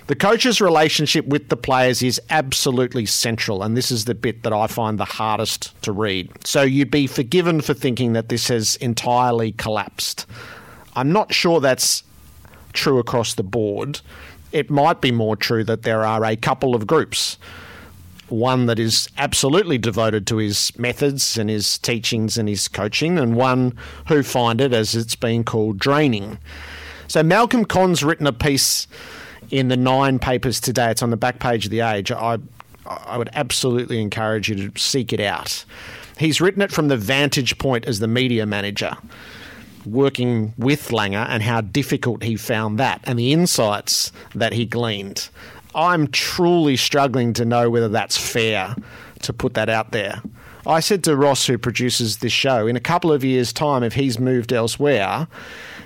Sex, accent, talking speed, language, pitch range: male, Australian, 175 wpm, English, 110-135 Hz